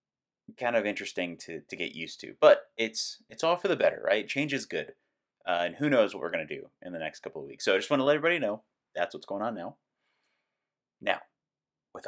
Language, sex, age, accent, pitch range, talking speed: English, male, 30-49, American, 90-150 Hz, 245 wpm